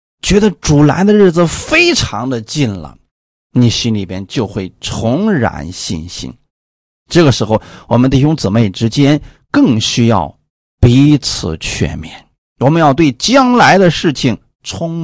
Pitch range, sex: 95-140 Hz, male